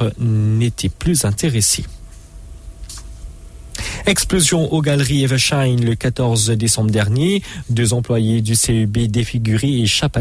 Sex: male